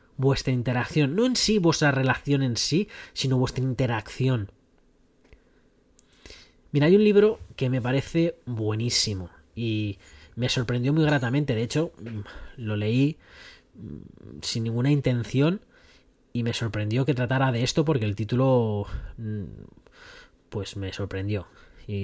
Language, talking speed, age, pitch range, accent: Spanish, 125 wpm, 20-39, 110-145 Hz, Spanish